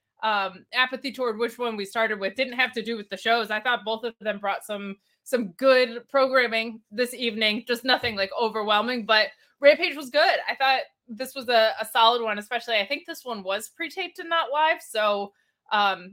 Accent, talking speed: American, 205 wpm